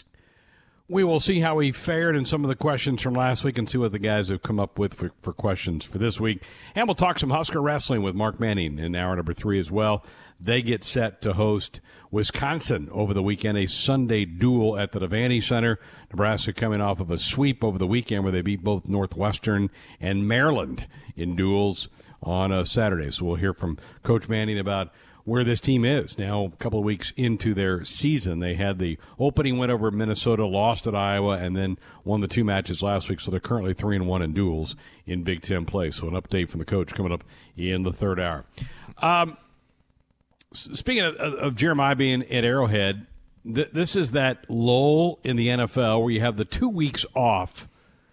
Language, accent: English, American